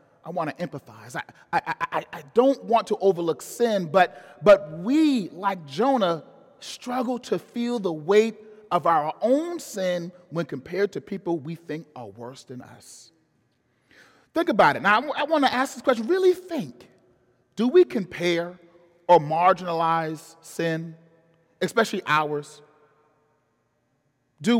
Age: 40-59